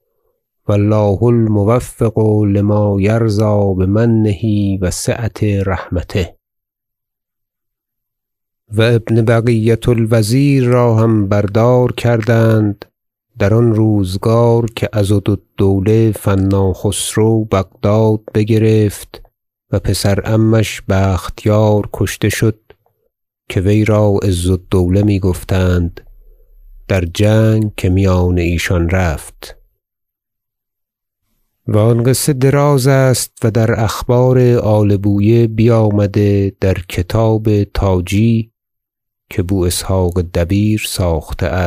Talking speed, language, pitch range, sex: 95 wpm, Persian, 100-115 Hz, male